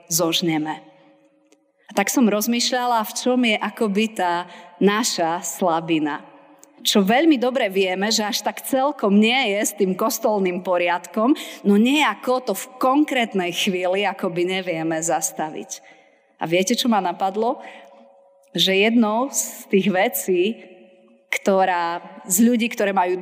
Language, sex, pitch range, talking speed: Slovak, female, 175-230 Hz, 130 wpm